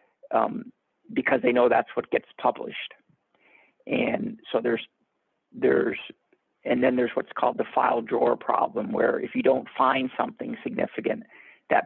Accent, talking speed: American, 145 wpm